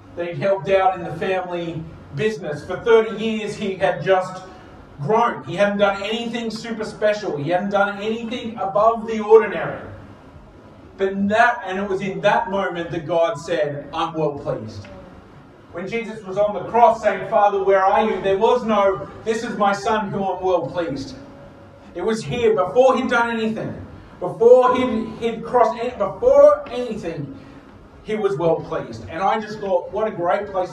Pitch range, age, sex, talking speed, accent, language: 155-215 Hz, 40-59, male, 175 wpm, Australian, English